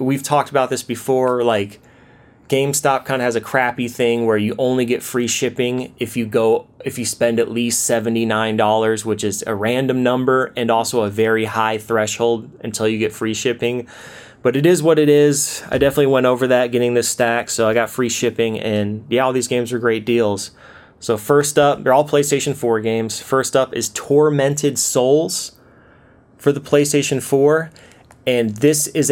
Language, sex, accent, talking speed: English, male, American, 190 wpm